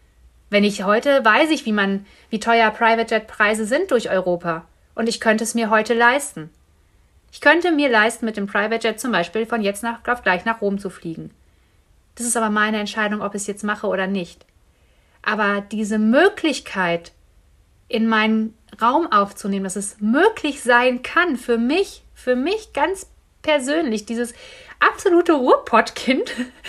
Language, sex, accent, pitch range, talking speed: German, female, German, 205-250 Hz, 155 wpm